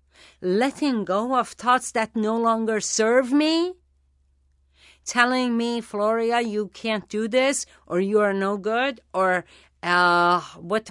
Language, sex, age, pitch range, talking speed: English, female, 50-69, 170-255 Hz, 130 wpm